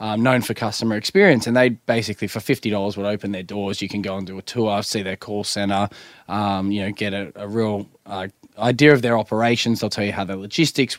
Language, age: English, 10-29